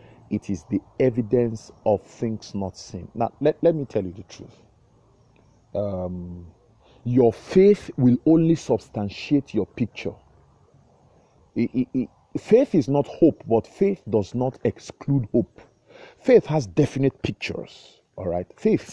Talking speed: 140 wpm